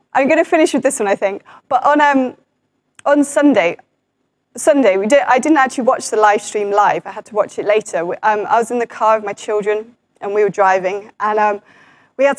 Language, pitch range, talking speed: English, 210-290 Hz, 230 wpm